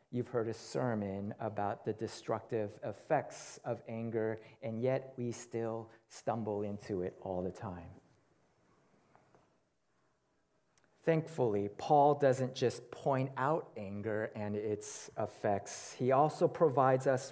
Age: 40-59